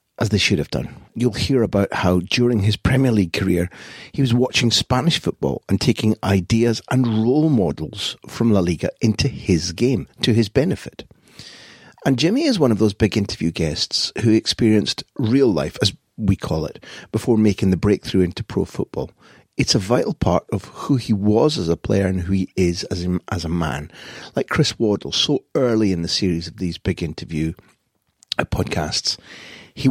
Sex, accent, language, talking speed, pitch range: male, British, English, 180 wpm, 90-115 Hz